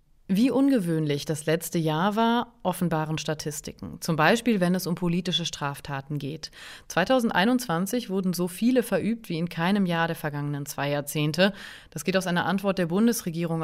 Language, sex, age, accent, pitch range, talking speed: German, female, 30-49, German, 155-205 Hz, 160 wpm